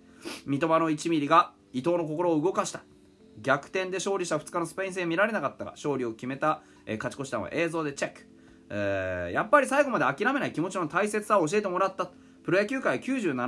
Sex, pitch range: male, 165-260 Hz